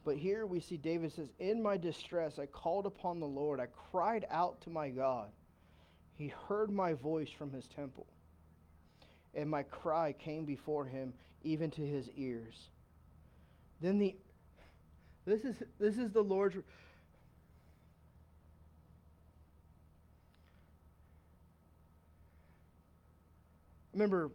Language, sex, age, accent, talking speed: English, male, 30-49, American, 115 wpm